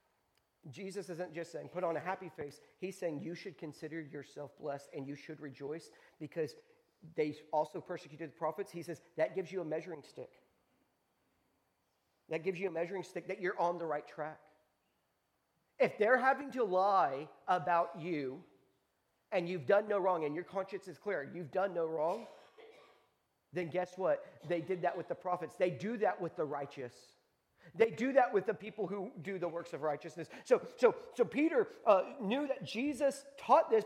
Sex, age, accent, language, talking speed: male, 40-59, American, English, 185 wpm